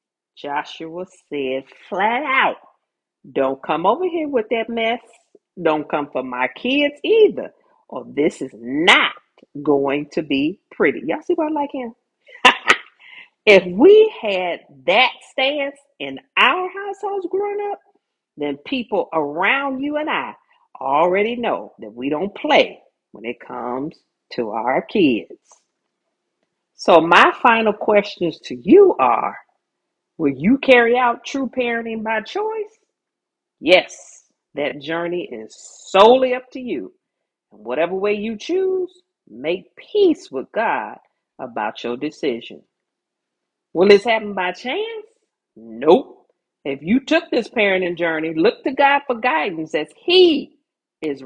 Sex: female